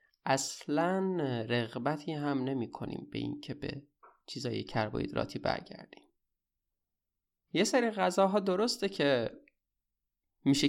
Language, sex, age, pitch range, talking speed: Persian, male, 20-39, 115-155 Hz, 90 wpm